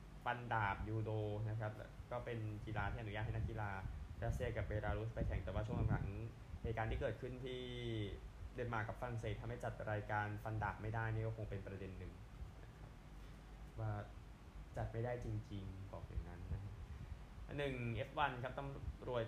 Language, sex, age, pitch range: Thai, male, 20-39, 100-115 Hz